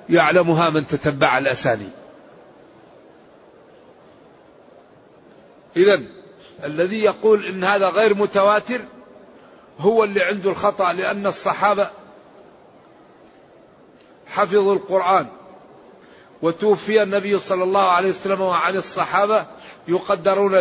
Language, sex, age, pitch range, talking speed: Arabic, male, 50-69, 175-205 Hz, 80 wpm